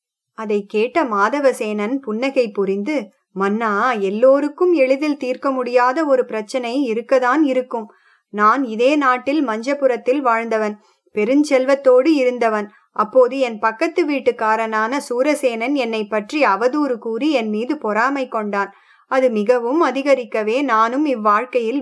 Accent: Indian